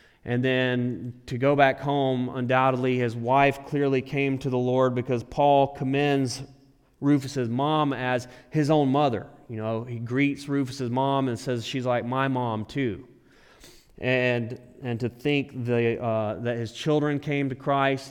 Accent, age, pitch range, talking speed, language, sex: American, 30-49, 115-135 Hz, 160 wpm, English, male